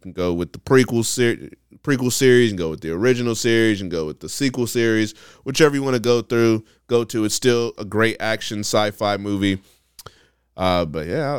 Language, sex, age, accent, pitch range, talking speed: English, male, 20-39, American, 95-120 Hz, 200 wpm